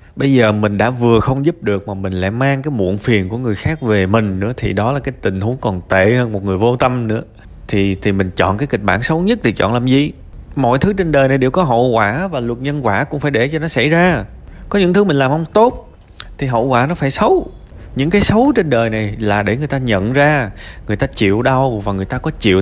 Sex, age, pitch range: male, 20-39, 100-150 Hz